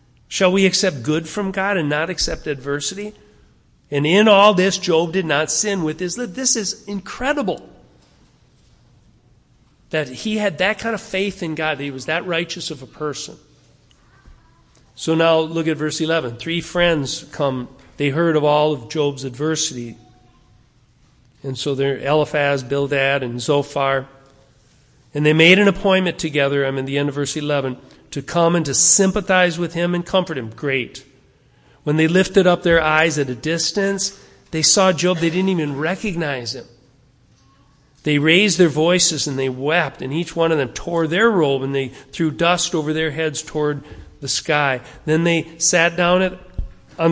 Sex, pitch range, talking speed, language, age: male, 145-180 Hz, 170 wpm, English, 40-59